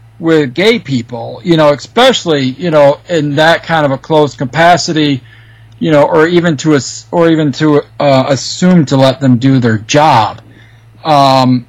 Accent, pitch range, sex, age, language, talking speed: American, 120-165 Hz, male, 40-59, English, 170 wpm